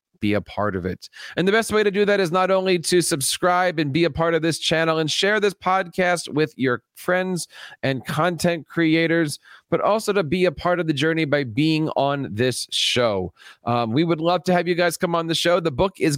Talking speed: 235 wpm